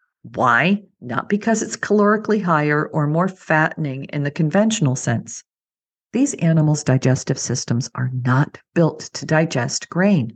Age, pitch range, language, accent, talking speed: 50-69, 145-185 Hz, English, American, 135 wpm